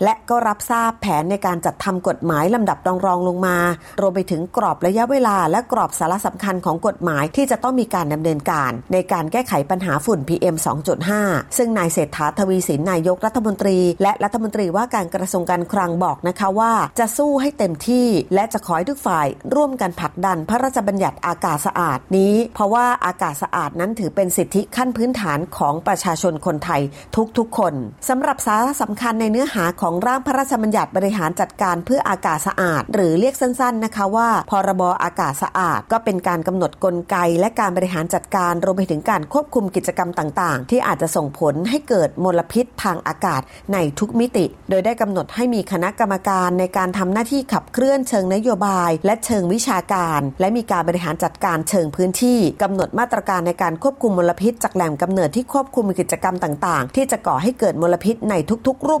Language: Thai